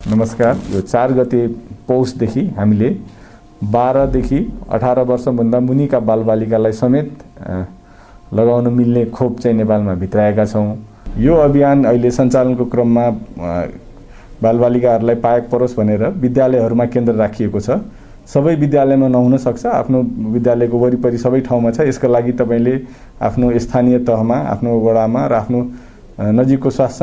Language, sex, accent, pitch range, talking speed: English, male, Indian, 110-130 Hz, 100 wpm